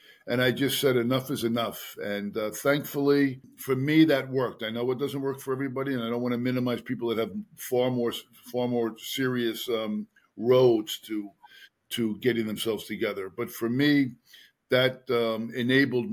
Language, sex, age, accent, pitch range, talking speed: English, male, 50-69, American, 115-130 Hz, 180 wpm